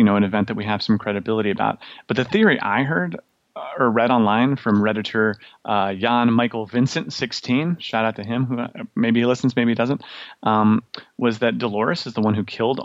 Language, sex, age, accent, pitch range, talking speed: English, male, 30-49, American, 105-120 Hz, 210 wpm